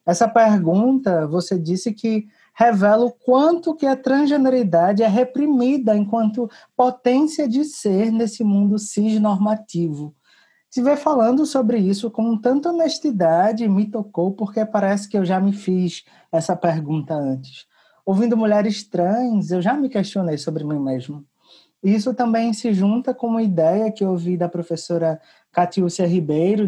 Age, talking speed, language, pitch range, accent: 20-39, 140 wpm, Portuguese, 180-235 Hz, Brazilian